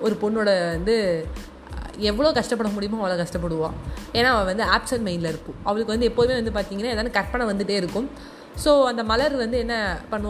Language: Tamil